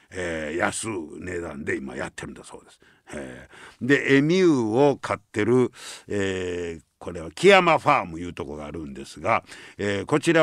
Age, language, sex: 60-79, Japanese, male